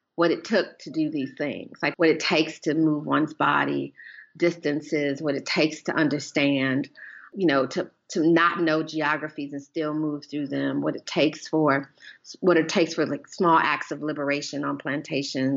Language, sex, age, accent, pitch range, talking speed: English, female, 40-59, American, 145-175 Hz, 185 wpm